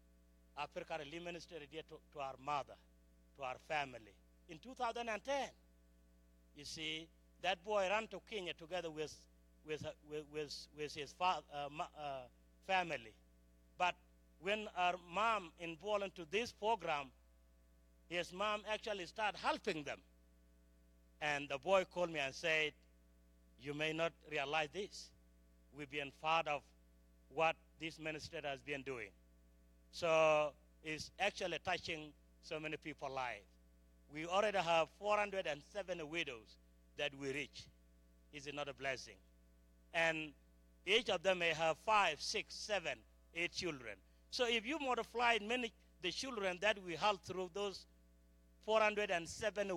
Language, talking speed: English, 130 wpm